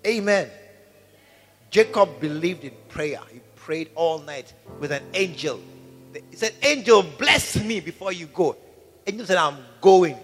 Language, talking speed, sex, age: English, 140 wpm, male, 50-69